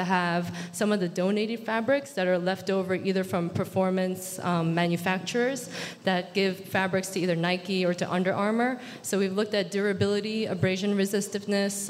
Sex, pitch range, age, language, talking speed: female, 175-205 Hz, 20-39, English, 160 wpm